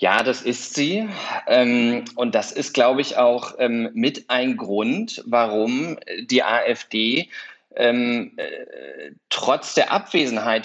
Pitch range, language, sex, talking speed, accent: 115-145 Hz, German, male, 105 wpm, German